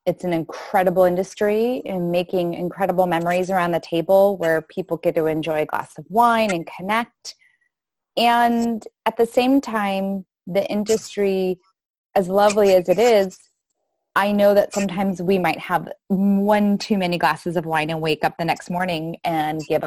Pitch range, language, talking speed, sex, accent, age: 170-215 Hz, English, 165 wpm, female, American, 20-39